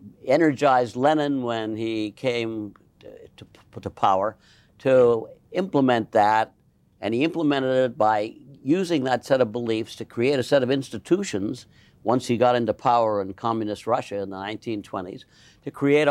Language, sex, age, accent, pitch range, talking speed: English, male, 60-79, American, 110-145 Hz, 155 wpm